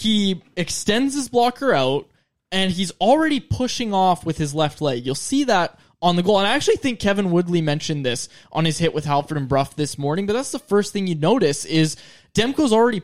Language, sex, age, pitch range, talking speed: English, male, 20-39, 165-220 Hz, 215 wpm